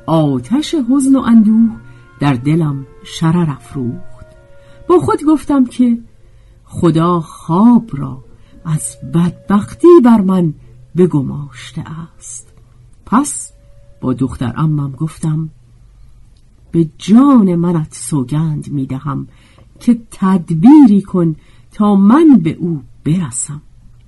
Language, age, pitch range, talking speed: Persian, 50-69, 120-190 Hz, 100 wpm